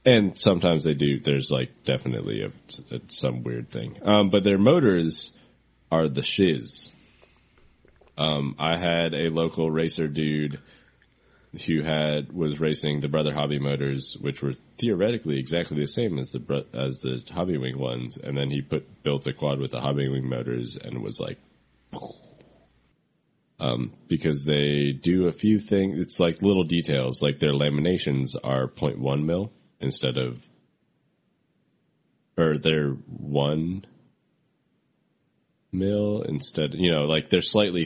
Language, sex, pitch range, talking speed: English, male, 70-85 Hz, 145 wpm